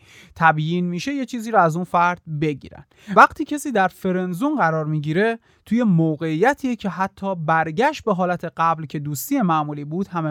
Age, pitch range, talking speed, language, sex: 30-49, 160-215 Hz, 165 wpm, Persian, male